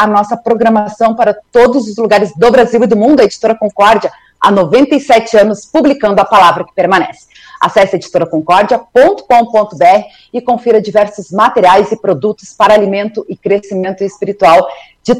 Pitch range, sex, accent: 185-235 Hz, female, Brazilian